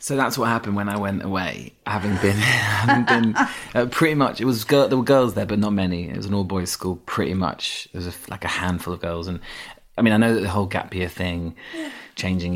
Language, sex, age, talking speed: English, male, 30-49, 255 wpm